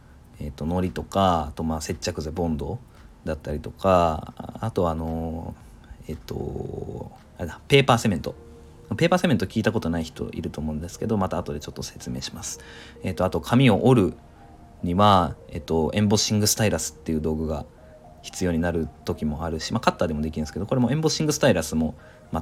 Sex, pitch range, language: male, 80-115 Hz, Japanese